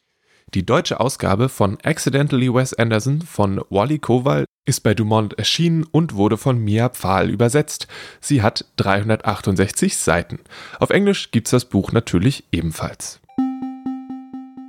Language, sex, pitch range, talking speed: German, male, 105-155 Hz, 130 wpm